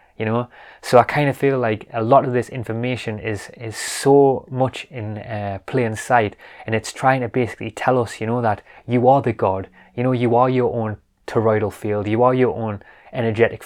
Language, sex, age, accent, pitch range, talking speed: English, male, 20-39, British, 105-125 Hz, 210 wpm